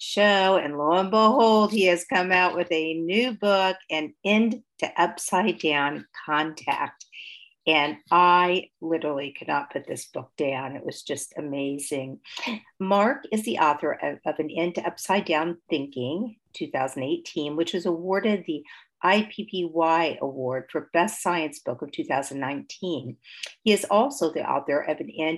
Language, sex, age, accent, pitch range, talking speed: English, female, 50-69, American, 150-190 Hz, 150 wpm